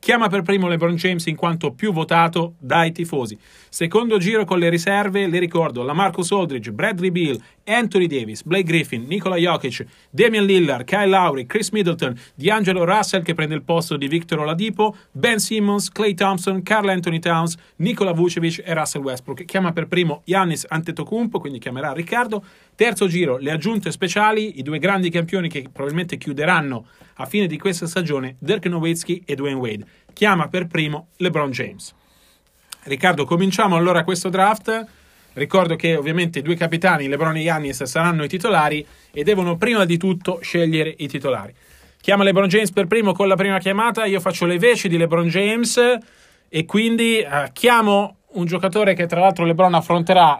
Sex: male